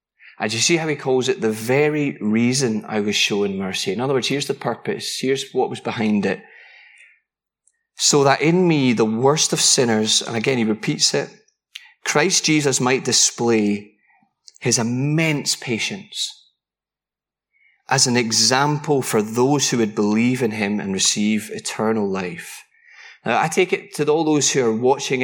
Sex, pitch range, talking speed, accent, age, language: male, 110-155 Hz, 165 wpm, British, 30-49, English